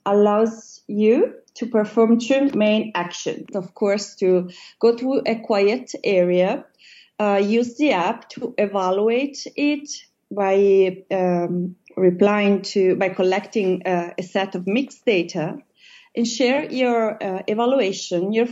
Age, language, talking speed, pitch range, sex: 30-49, English, 130 wpm, 190-245 Hz, female